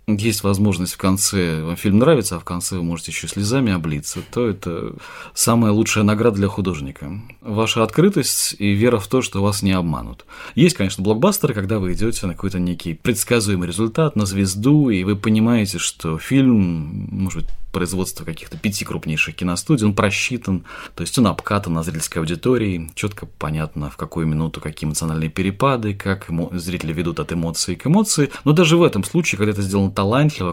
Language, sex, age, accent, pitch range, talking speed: Russian, male, 20-39, native, 85-110 Hz, 175 wpm